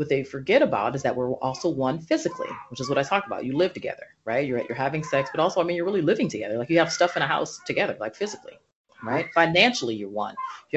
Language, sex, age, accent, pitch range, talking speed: English, female, 40-59, American, 130-195 Hz, 260 wpm